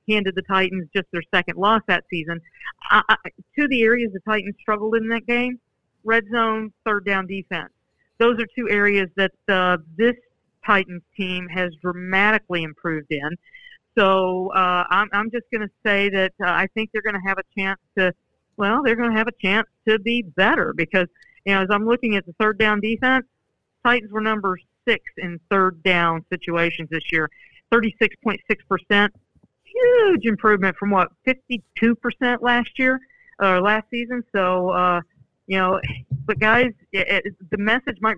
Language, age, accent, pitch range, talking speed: English, 50-69, American, 180-220 Hz, 175 wpm